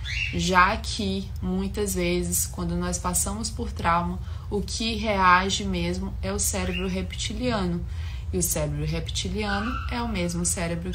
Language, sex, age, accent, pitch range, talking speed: Portuguese, female, 20-39, Brazilian, 80-100 Hz, 135 wpm